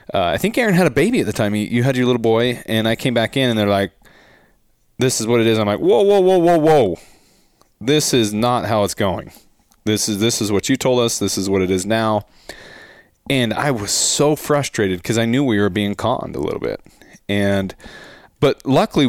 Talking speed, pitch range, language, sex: 235 wpm, 100-115 Hz, English, male